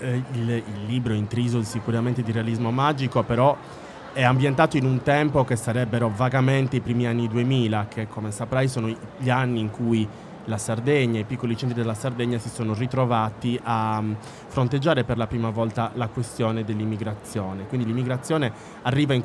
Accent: native